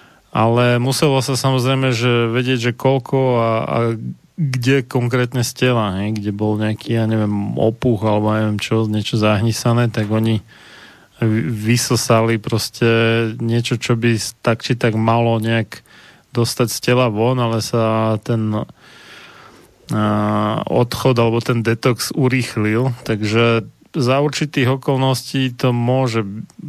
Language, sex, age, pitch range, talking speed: Slovak, male, 30-49, 110-125 Hz, 130 wpm